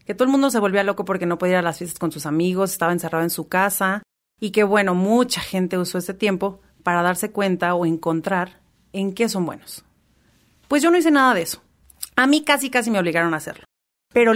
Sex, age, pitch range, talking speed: female, 30-49, 185-240 Hz, 230 wpm